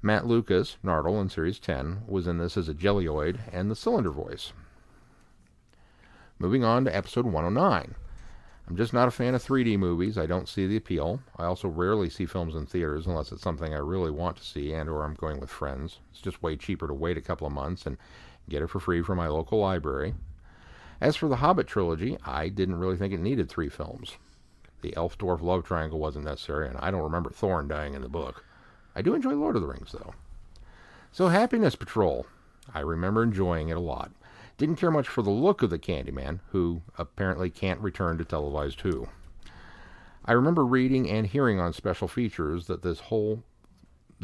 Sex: male